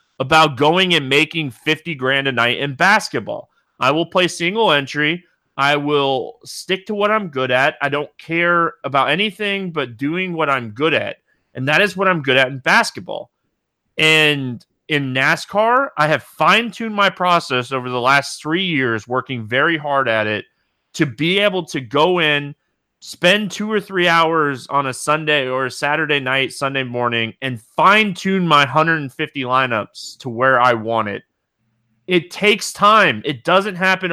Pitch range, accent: 135-190 Hz, American